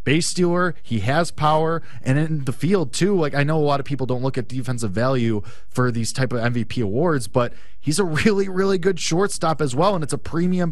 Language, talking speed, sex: English, 230 wpm, male